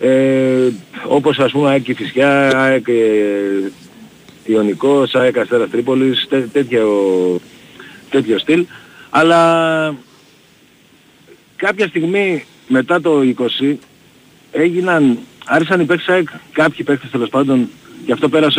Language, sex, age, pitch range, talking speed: Greek, male, 50-69, 125-170 Hz, 110 wpm